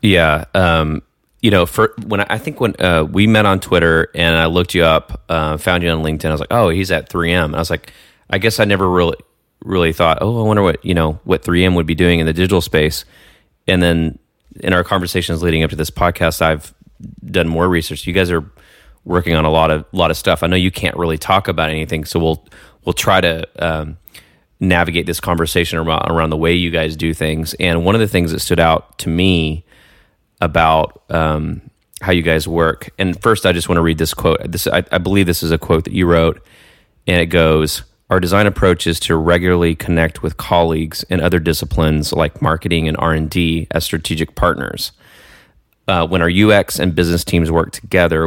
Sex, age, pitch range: male, 30-49, 80-90 Hz